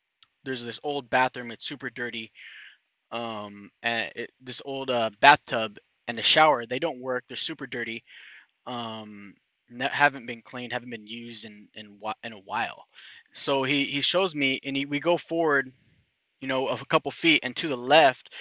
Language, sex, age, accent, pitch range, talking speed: English, male, 20-39, American, 120-145 Hz, 185 wpm